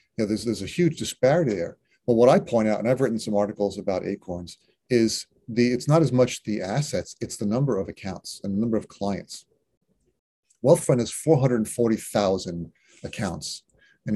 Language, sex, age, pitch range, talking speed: English, male, 40-59, 100-115 Hz, 175 wpm